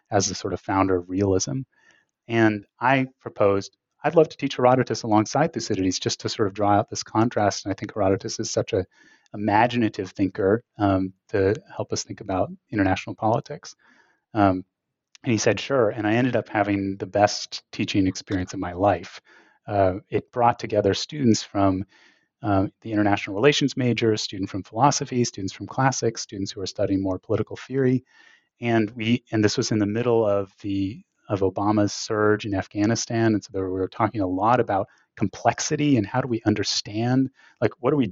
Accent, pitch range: American, 100-120 Hz